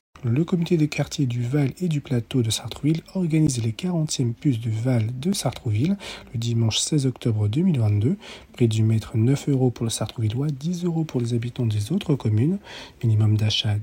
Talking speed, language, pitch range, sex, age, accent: 180 wpm, French, 115-150 Hz, male, 40-59, French